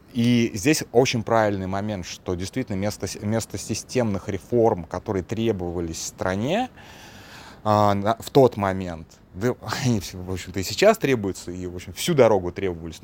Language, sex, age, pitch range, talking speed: Russian, male, 20-39, 100-125 Hz, 115 wpm